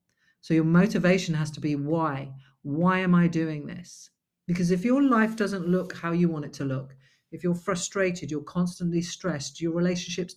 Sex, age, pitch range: female, 40-59, 150-180 Hz